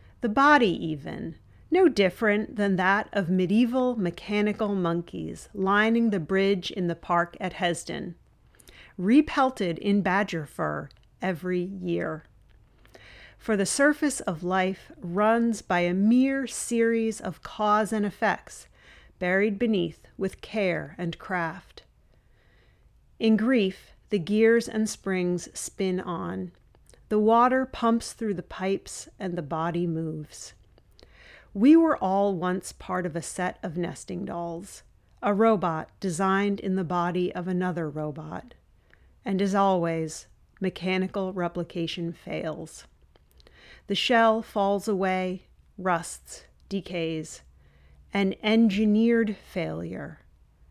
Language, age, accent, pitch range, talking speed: English, 40-59, American, 175-215 Hz, 115 wpm